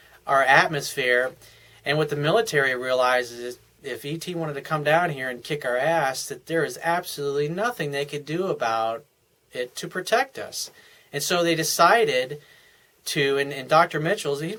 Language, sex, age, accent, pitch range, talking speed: English, male, 30-49, American, 135-185 Hz, 165 wpm